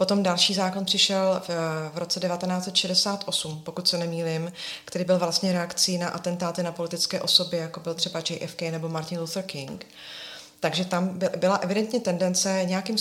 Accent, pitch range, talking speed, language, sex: native, 165-190 Hz, 160 wpm, Czech, female